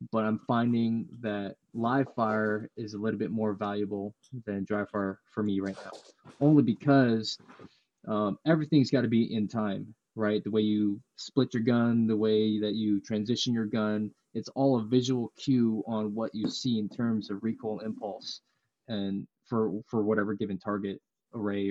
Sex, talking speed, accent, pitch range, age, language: male, 170 wpm, American, 105-115 Hz, 20-39, English